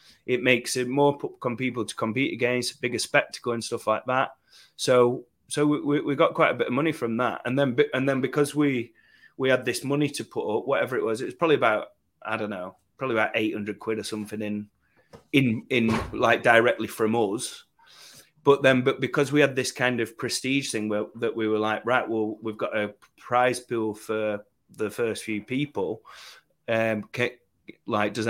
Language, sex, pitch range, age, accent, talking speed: English, male, 110-135 Hz, 30-49, British, 205 wpm